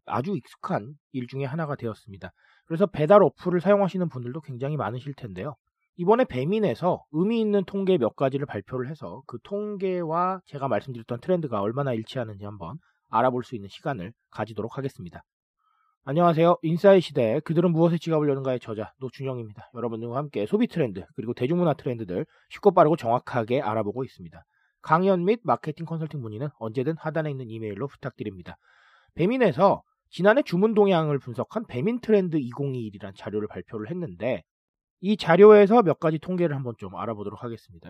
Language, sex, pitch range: Korean, male, 125-195 Hz